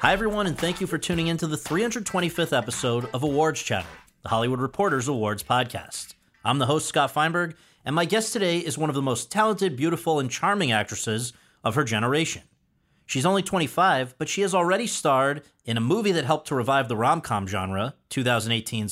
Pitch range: 115-170 Hz